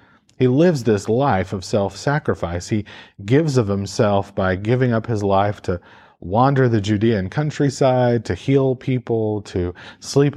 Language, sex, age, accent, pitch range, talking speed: English, male, 40-59, American, 100-120 Hz, 145 wpm